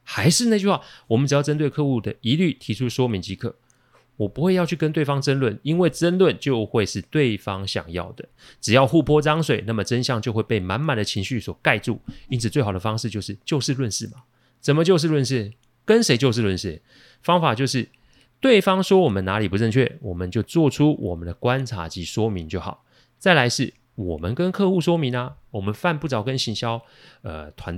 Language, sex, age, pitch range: Chinese, male, 30-49, 105-150 Hz